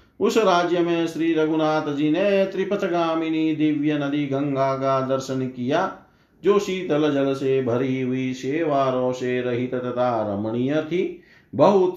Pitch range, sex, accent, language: 130-170 Hz, male, native, Hindi